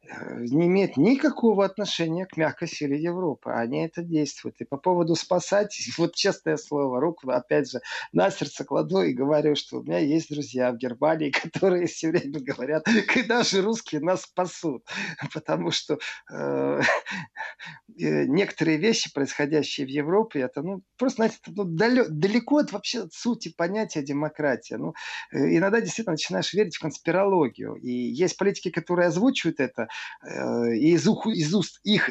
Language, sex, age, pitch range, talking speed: Russian, male, 40-59, 150-215 Hz, 140 wpm